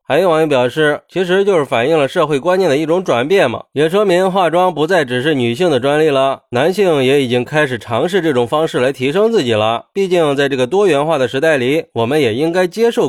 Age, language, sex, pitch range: 20-39, Chinese, male, 125-190 Hz